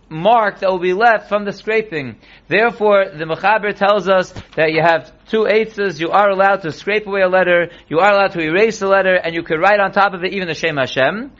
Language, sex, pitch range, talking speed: English, male, 170-210 Hz, 235 wpm